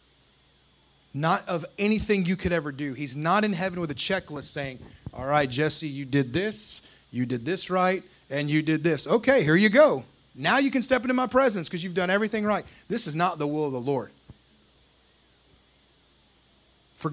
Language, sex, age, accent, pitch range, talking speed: English, male, 30-49, American, 140-190 Hz, 190 wpm